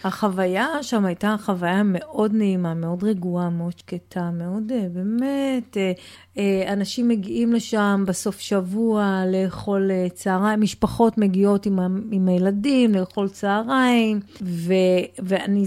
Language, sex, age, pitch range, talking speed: Hebrew, female, 30-49, 185-235 Hz, 105 wpm